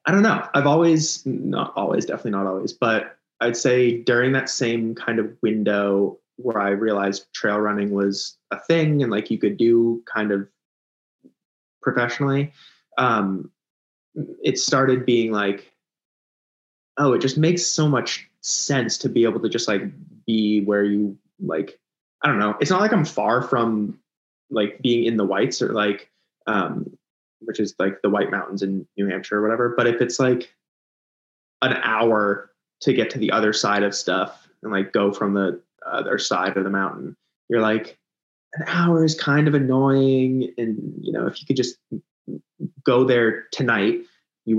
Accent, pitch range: American, 100-125 Hz